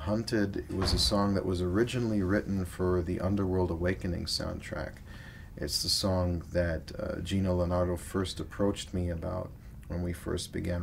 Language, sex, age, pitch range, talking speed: English, male, 40-59, 90-100 Hz, 160 wpm